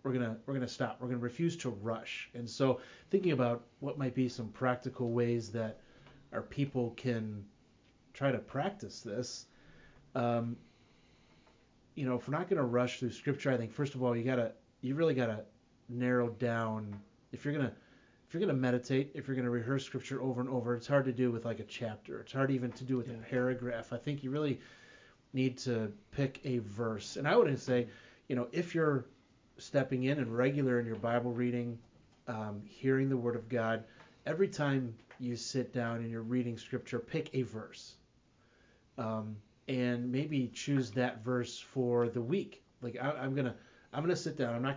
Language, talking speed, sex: English, 190 wpm, male